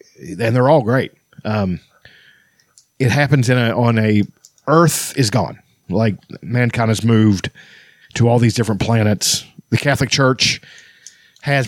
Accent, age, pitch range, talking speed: American, 40-59, 105-125 Hz, 140 wpm